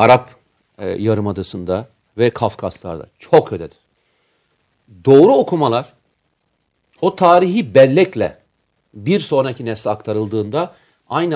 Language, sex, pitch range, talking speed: Turkish, male, 110-170 Hz, 90 wpm